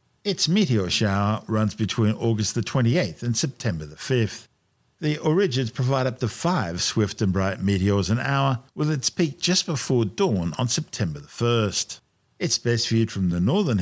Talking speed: 175 wpm